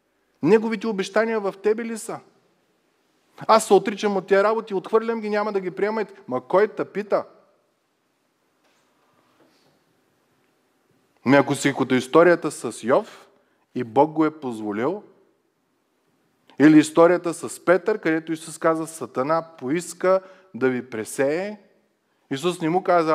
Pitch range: 135-195 Hz